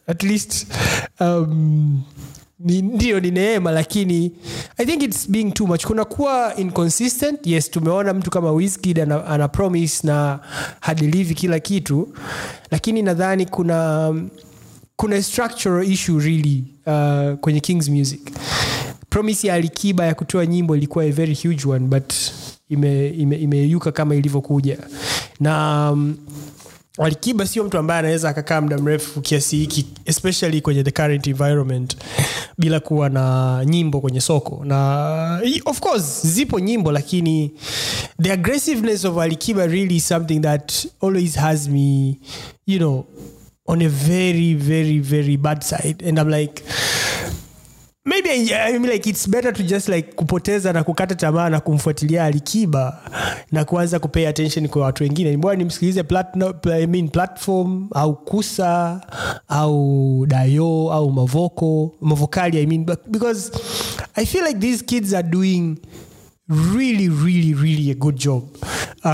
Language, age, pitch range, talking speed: Swahili, 20-39, 145-185 Hz, 120 wpm